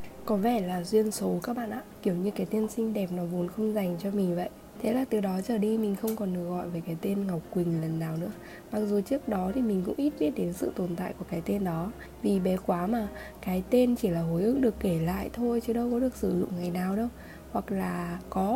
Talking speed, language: 270 wpm, Vietnamese